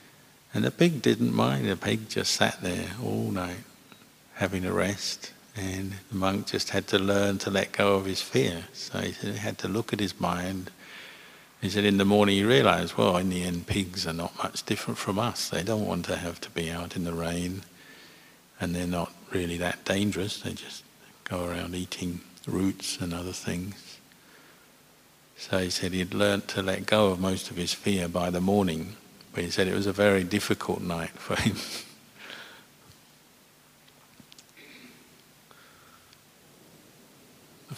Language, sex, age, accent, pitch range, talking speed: English, male, 50-69, British, 90-100 Hz, 175 wpm